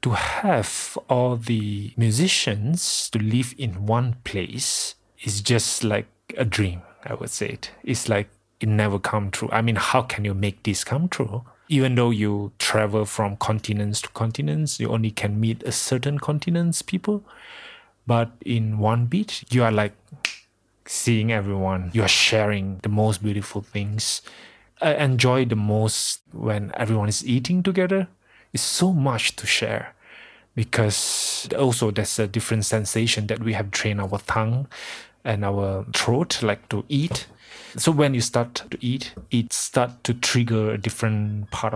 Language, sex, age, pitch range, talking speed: English, male, 30-49, 105-120 Hz, 160 wpm